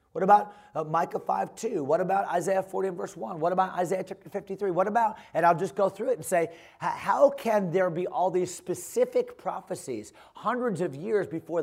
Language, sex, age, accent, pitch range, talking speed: English, male, 30-49, American, 165-215 Hz, 200 wpm